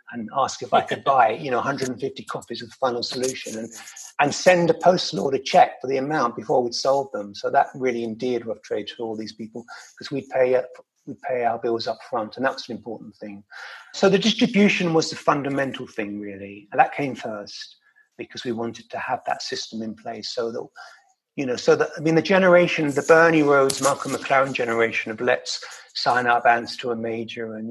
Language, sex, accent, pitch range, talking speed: English, male, British, 115-175 Hz, 210 wpm